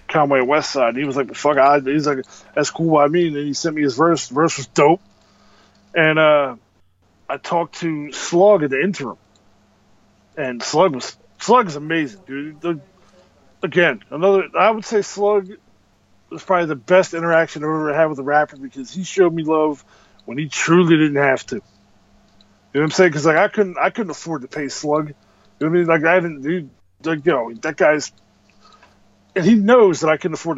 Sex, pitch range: male, 130-175 Hz